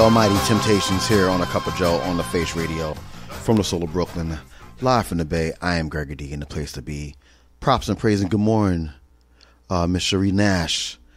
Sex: male